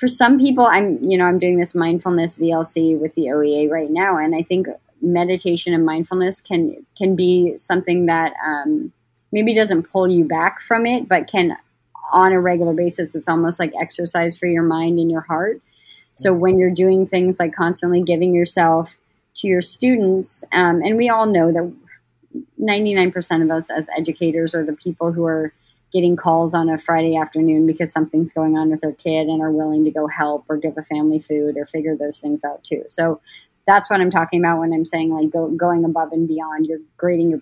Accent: American